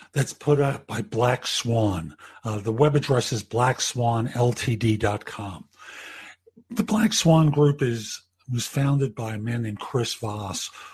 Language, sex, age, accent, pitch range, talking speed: English, male, 50-69, American, 110-150 Hz, 135 wpm